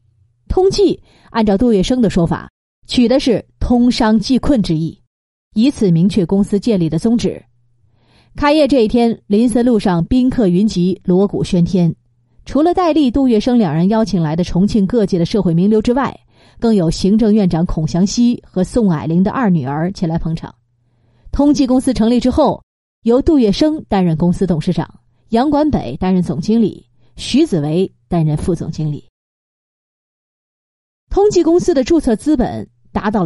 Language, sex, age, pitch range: Chinese, female, 30-49, 170-240 Hz